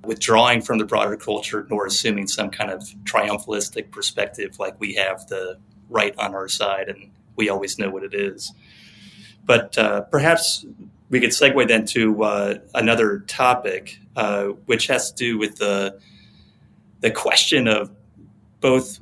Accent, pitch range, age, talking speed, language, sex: American, 105-115 Hz, 30-49, 155 wpm, English, male